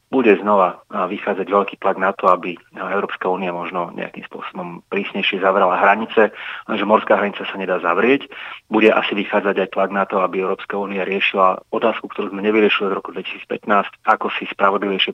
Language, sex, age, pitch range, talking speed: Slovak, male, 30-49, 95-100 Hz, 170 wpm